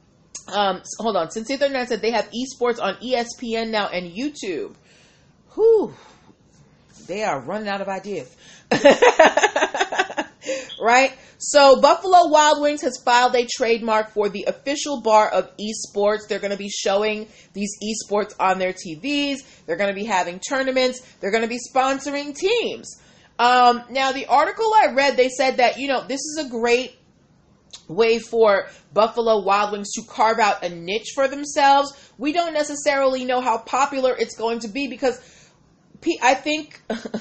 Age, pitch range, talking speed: 30-49, 210-285 Hz, 160 wpm